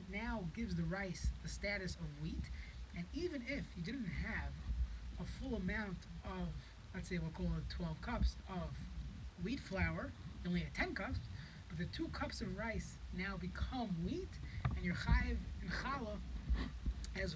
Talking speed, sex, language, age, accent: 165 wpm, male, English, 20-39, American